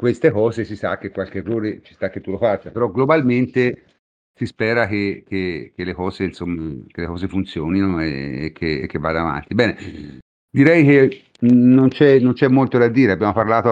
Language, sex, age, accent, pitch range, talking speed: Italian, male, 50-69, native, 95-120 Hz, 195 wpm